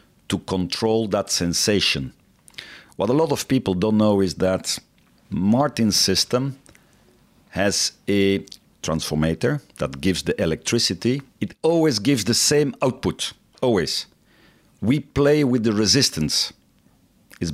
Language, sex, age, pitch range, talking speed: English, male, 50-69, 95-125 Hz, 120 wpm